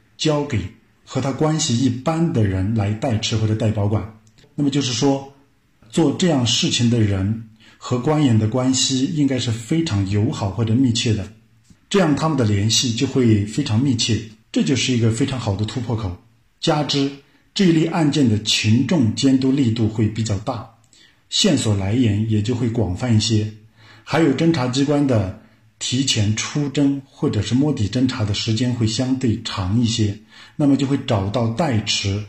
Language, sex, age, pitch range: Chinese, male, 50-69, 110-135 Hz